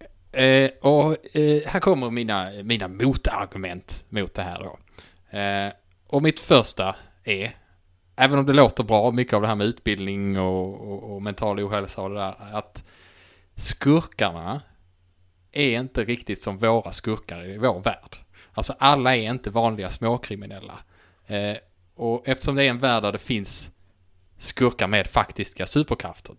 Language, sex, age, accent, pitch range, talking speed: English, male, 20-39, Norwegian, 95-120 Hz, 145 wpm